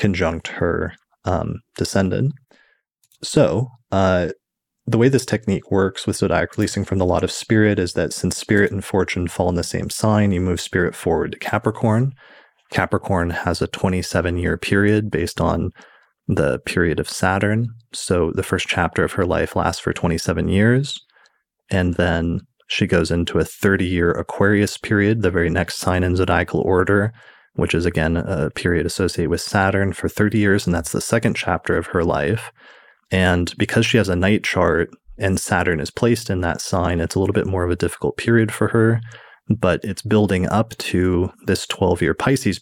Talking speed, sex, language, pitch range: 175 wpm, male, English, 90-105 Hz